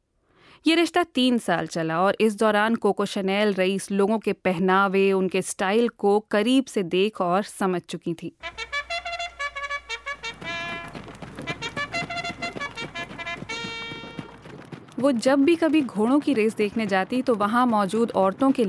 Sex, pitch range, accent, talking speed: female, 190-280 Hz, native, 120 wpm